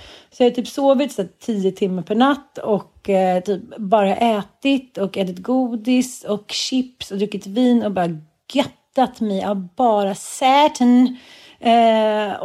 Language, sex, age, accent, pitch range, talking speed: Swedish, female, 40-59, native, 190-255 Hz, 150 wpm